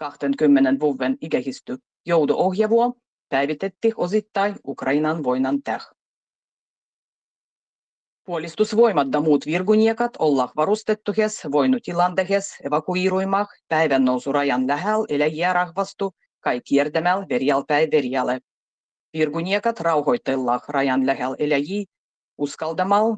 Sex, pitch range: female, 145-210 Hz